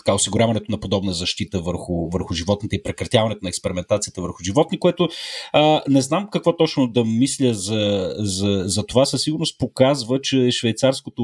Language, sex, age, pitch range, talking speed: Bulgarian, male, 30-49, 100-135 Hz, 160 wpm